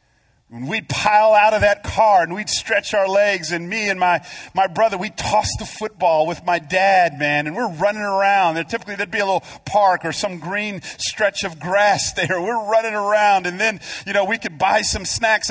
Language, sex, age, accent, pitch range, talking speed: English, male, 40-59, American, 195-255 Hz, 215 wpm